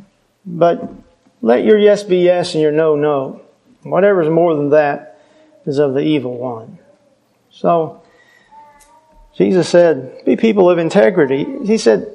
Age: 40-59